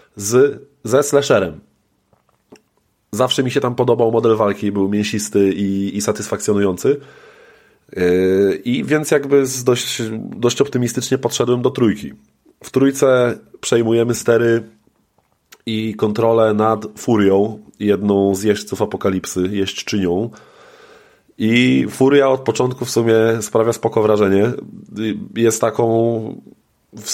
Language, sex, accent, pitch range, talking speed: Polish, male, native, 105-125 Hz, 105 wpm